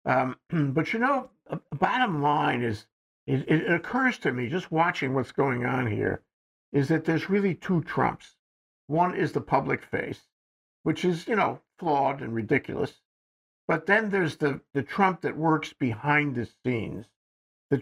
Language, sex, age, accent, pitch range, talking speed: English, male, 60-79, American, 130-165 Hz, 165 wpm